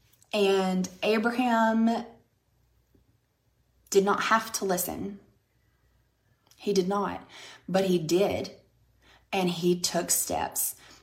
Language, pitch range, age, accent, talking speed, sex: English, 160-200 Hz, 30-49, American, 95 wpm, female